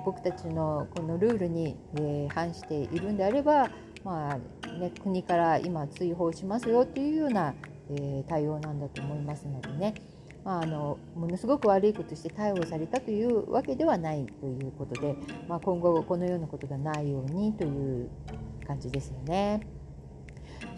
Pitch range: 150-220 Hz